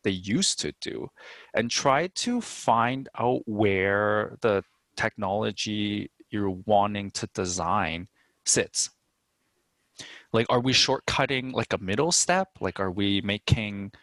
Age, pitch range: 20-39, 95-125 Hz